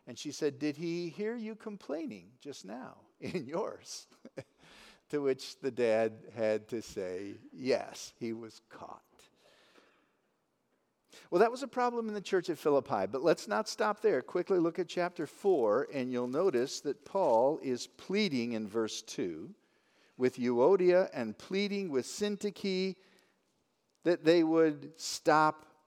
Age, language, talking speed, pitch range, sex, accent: 50-69, English, 145 wpm, 125-200 Hz, male, American